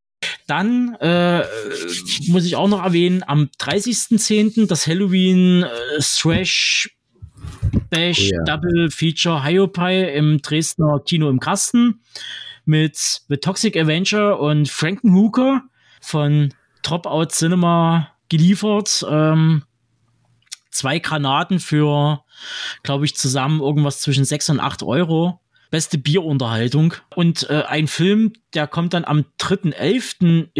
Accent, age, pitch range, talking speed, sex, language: German, 20-39, 145-180 Hz, 110 wpm, male, German